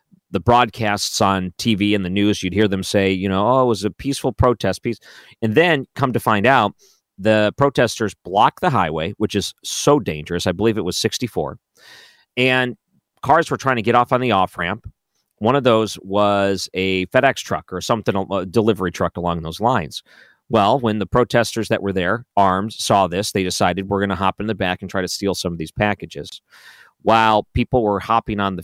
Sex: male